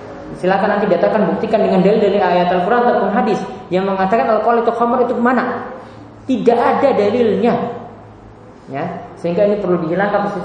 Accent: Indonesian